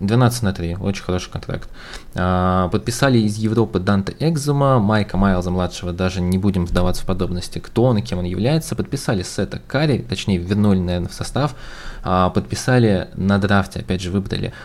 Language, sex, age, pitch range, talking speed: Russian, male, 20-39, 90-110 Hz, 160 wpm